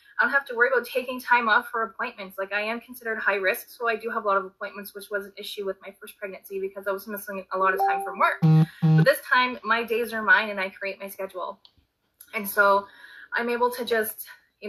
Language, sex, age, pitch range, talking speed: English, female, 20-39, 195-220 Hz, 255 wpm